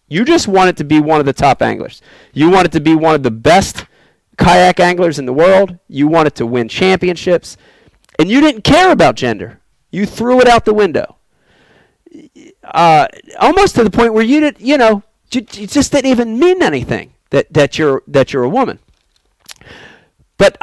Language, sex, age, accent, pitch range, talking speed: English, male, 40-59, American, 155-240 Hz, 185 wpm